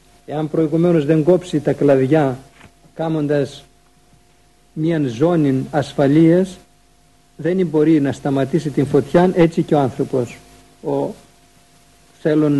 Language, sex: Greek, male